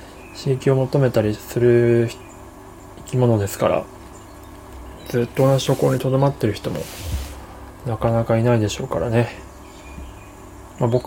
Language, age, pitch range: Japanese, 20-39, 95-135 Hz